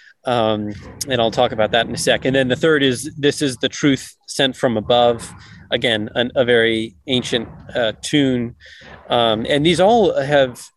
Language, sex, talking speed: English, male, 185 wpm